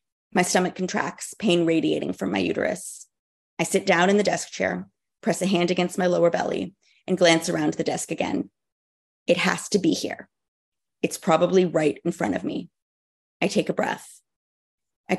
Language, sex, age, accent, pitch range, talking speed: English, female, 30-49, American, 165-190 Hz, 180 wpm